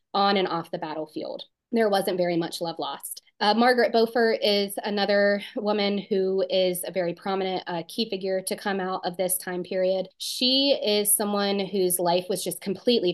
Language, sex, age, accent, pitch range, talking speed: English, female, 20-39, American, 180-220 Hz, 185 wpm